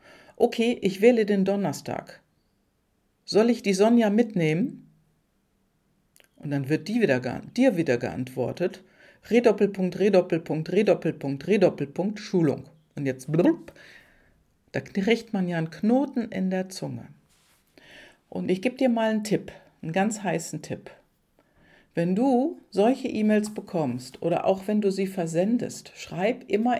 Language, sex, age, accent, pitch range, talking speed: German, female, 50-69, German, 150-210 Hz, 135 wpm